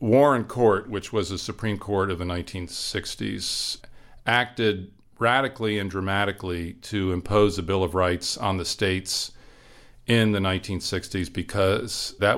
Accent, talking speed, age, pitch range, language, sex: American, 135 wpm, 40-59, 90-105 Hz, English, male